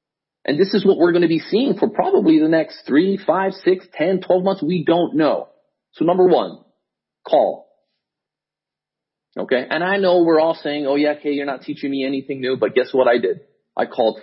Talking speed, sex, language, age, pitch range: 205 wpm, male, English, 30-49, 115-185 Hz